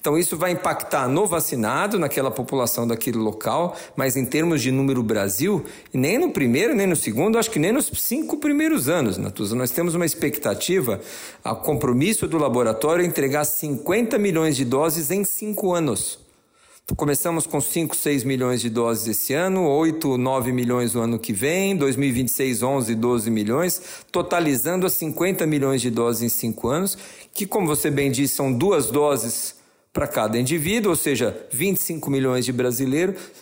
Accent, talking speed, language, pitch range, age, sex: Brazilian, 170 wpm, Portuguese, 135-195 Hz, 50-69, male